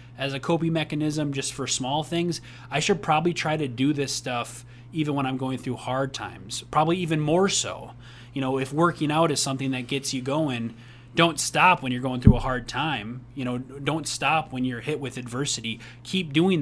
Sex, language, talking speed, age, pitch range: male, English, 210 wpm, 20-39, 120-145 Hz